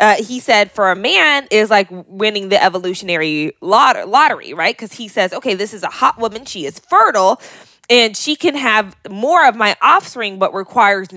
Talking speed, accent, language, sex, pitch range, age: 190 wpm, American, English, female, 190-255 Hz, 20-39